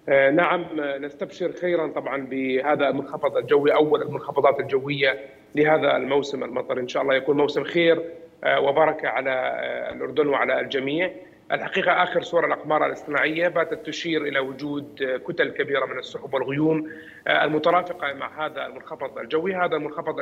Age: 40-59